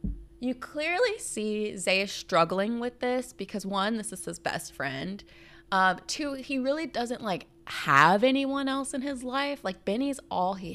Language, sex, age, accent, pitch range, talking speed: English, female, 20-39, American, 160-200 Hz, 165 wpm